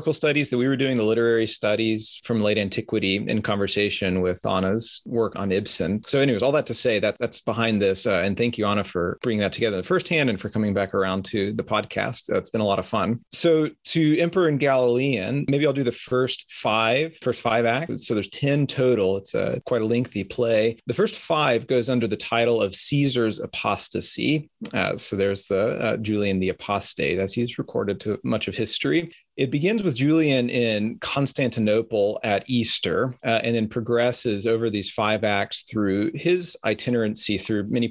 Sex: male